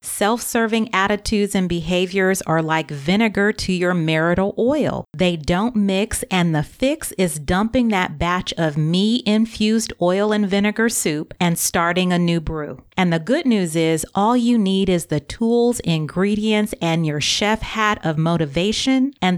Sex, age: female, 30-49